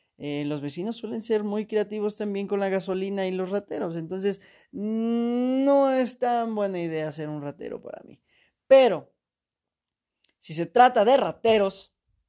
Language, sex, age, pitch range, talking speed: Spanish, male, 20-39, 175-245 Hz, 150 wpm